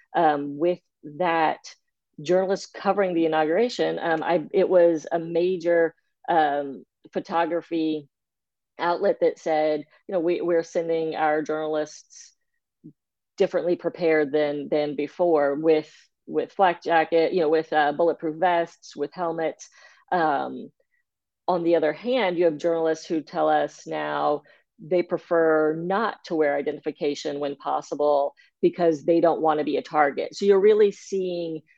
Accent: American